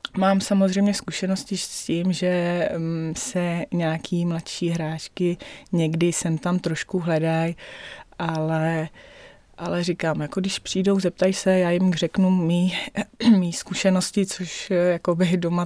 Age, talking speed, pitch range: 20-39, 120 wpm, 175-205 Hz